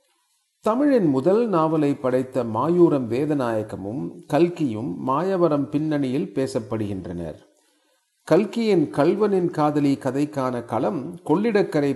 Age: 40-59